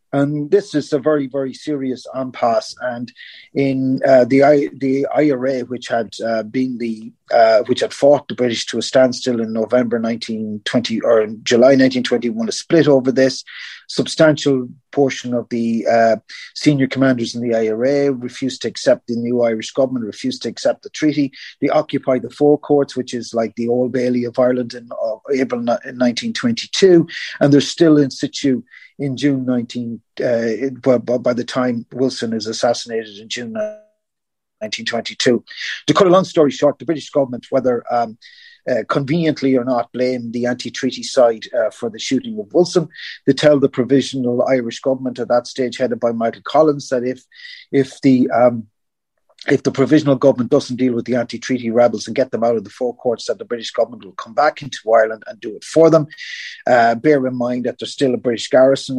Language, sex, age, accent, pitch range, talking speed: English, male, 30-49, Irish, 120-140 Hz, 195 wpm